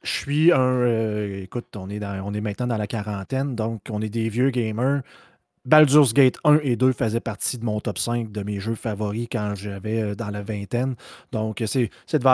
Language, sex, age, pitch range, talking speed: French, male, 30-49, 105-130 Hz, 210 wpm